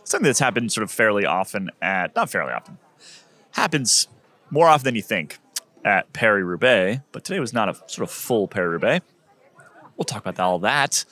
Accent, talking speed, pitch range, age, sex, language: American, 190 wpm, 110-130 Hz, 30-49, male, English